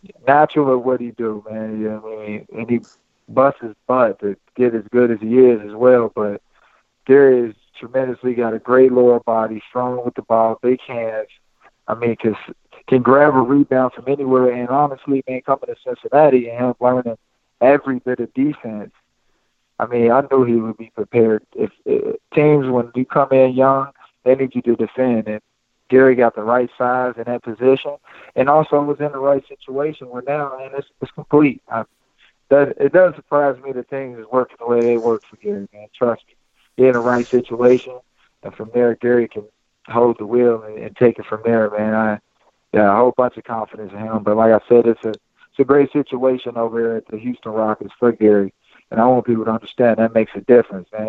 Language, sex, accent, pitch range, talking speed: English, male, American, 115-130 Hz, 210 wpm